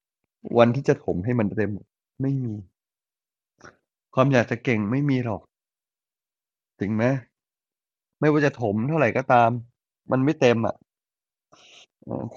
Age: 20-39